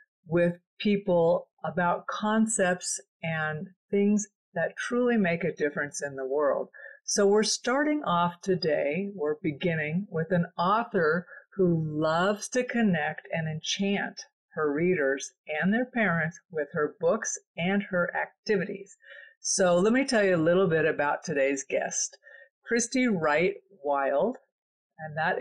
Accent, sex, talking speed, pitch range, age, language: American, female, 135 wpm, 150-200 Hz, 50-69, English